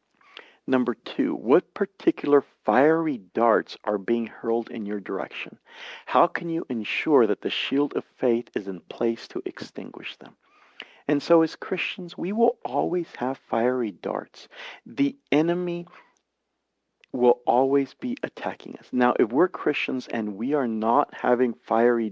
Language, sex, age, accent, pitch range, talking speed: English, male, 40-59, American, 110-140 Hz, 145 wpm